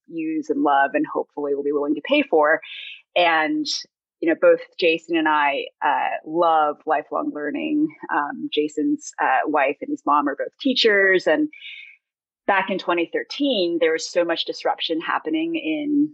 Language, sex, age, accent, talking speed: English, female, 30-49, American, 160 wpm